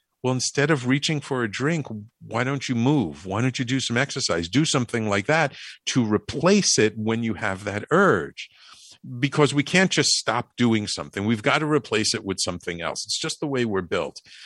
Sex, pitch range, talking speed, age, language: male, 105-145 Hz, 210 wpm, 50-69, English